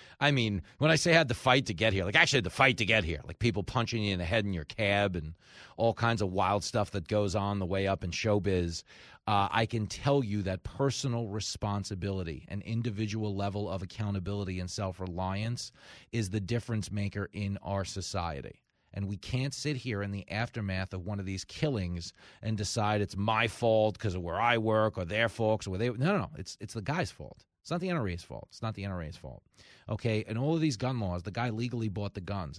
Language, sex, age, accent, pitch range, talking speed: English, male, 30-49, American, 100-120 Hz, 235 wpm